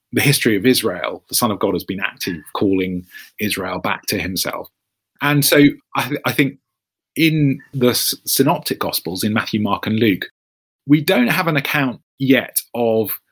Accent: British